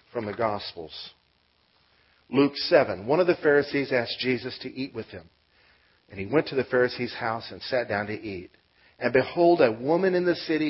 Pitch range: 110-150 Hz